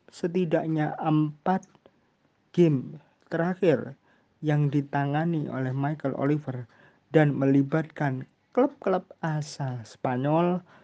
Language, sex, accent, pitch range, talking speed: Indonesian, male, native, 135-175 Hz, 80 wpm